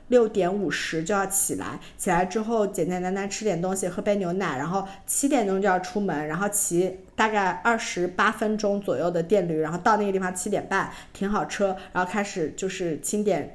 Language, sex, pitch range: Chinese, female, 190-240 Hz